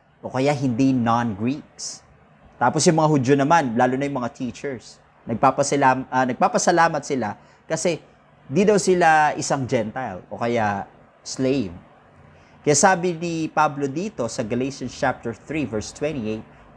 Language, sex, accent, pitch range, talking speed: Filipino, male, native, 120-165 Hz, 125 wpm